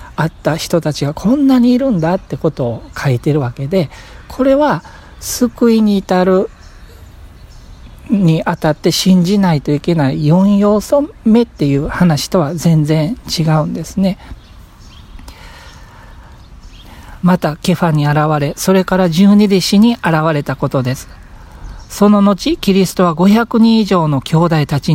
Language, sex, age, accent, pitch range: Japanese, male, 50-69, native, 145-195 Hz